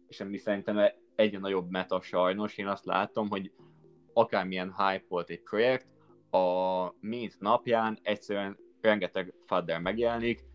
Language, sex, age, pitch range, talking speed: Hungarian, male, 20-39, 95-110 Hz, 135 wpm